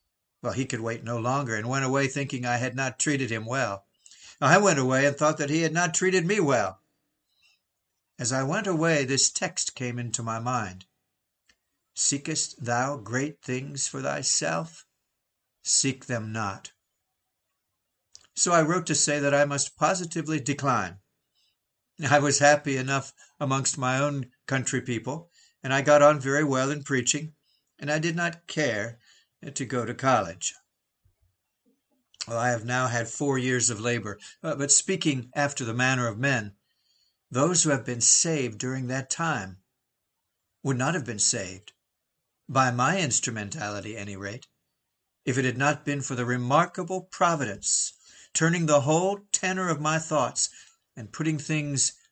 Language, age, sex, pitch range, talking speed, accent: English, 60-79, male, 120-150 Hz, 160 wpm, American